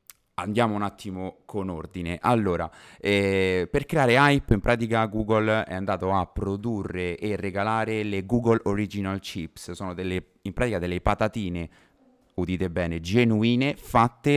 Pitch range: 90-120 Hz